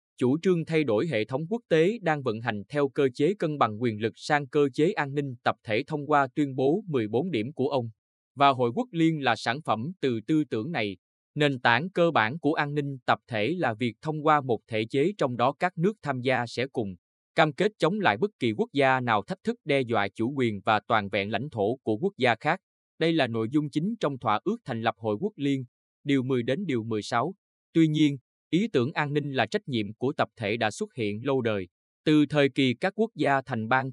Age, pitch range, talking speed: 20-39, 115-155 Hz, 240 wpm